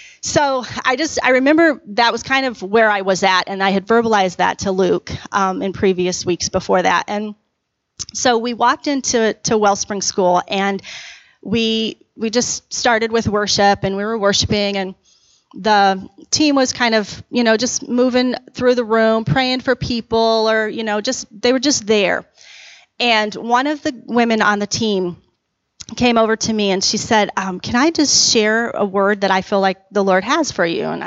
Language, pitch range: English, 195-245 Hz